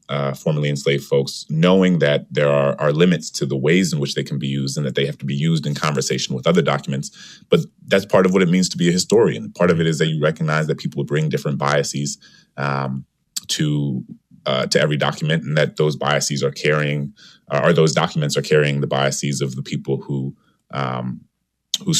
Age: 30-49